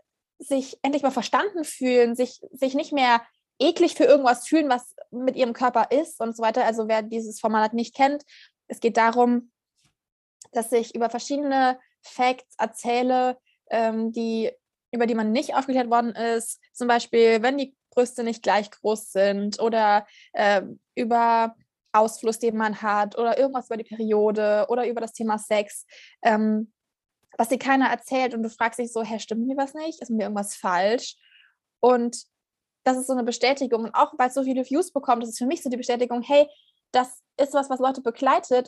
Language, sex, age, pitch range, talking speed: German, female, 20-39, 225-260 Hz, 175 wpm